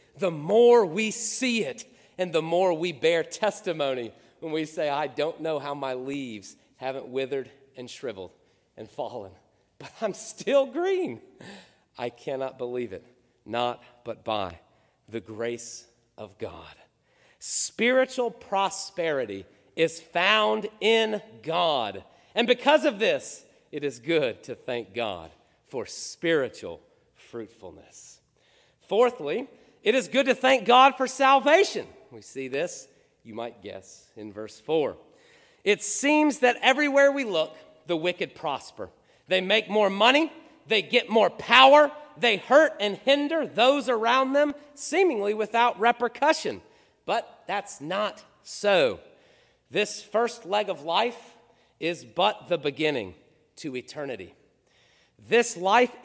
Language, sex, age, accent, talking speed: English, male, 40-59, American, 130 wpm